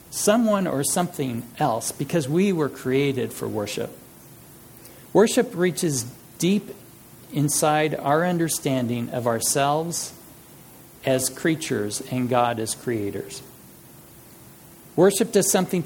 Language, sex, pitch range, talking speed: English, male, 130-175 Hz, 100 wpm